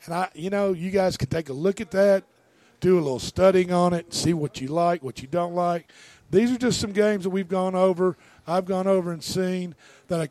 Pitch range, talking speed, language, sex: 150-190 Hz, 245 wpm, English, male